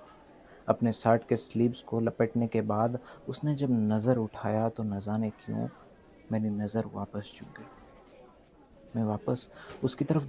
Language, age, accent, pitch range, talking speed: Hindi, 30-49, native, 110-135 Hz, 140 wpm